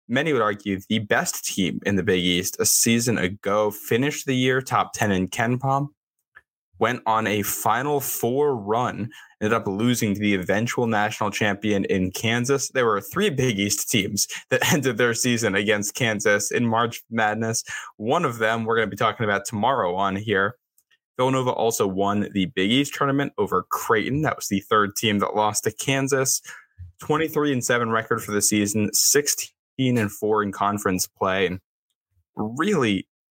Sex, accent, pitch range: male, American, 105-130 Hz